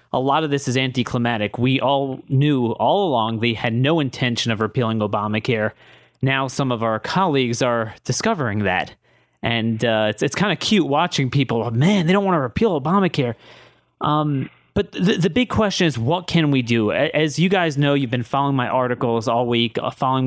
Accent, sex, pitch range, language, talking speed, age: American, male, 115-145 Hz, English, 195 wpm, 30-49